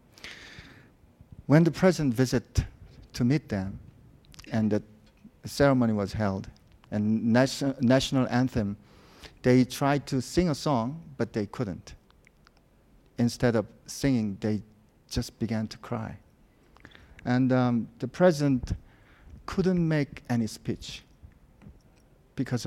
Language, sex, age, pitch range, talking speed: English, male, 50-69, 105-145 Hz, 110 wpm